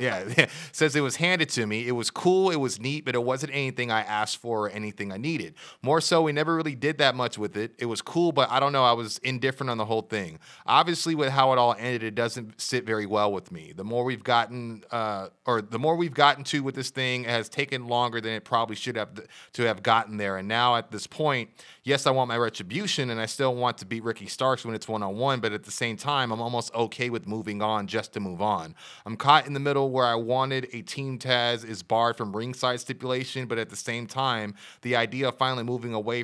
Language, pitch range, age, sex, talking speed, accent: English, 110-135 Hz, 30-49, male, 255 wpm, American